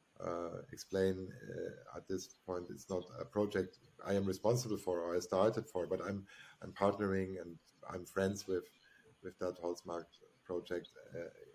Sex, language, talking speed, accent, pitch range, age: male, English, 160 wpm, German, 90-110 Hz, 50-69